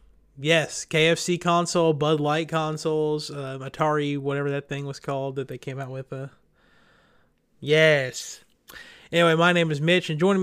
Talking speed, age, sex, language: 155 wpm, 30-49, male, English